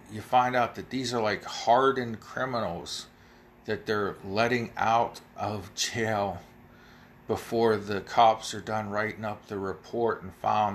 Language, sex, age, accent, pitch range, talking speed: English, male, 40-59, American, 100-120 Hz, 145 wpm